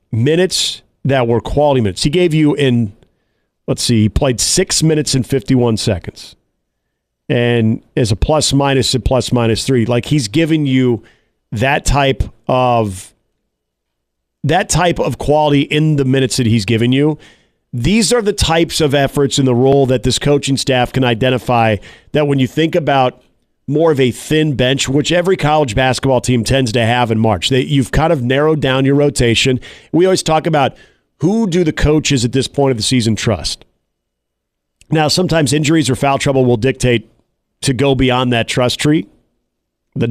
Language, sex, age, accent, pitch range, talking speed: English, male, 40-59, American, 120-150 Hz, 175 wpm